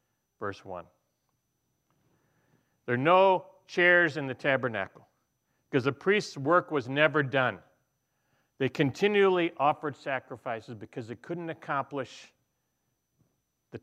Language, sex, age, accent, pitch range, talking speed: English, male, 60-79, American, 120-150 Hz, 110 wpm